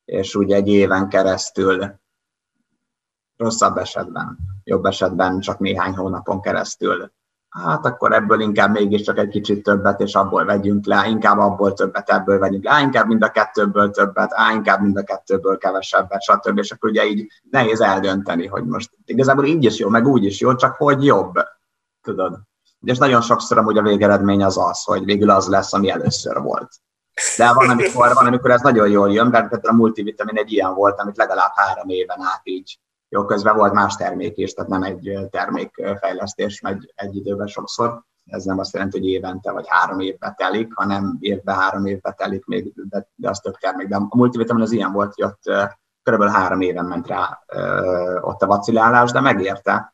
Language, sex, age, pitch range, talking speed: Hungarian, male, 30-49, 95-105 Hz, 185 wpm